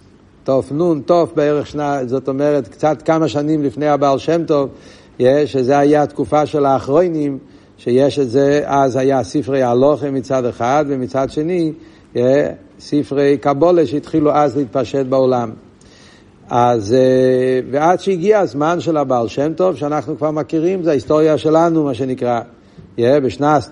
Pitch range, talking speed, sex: 130-155 Hz, 130 wpm, male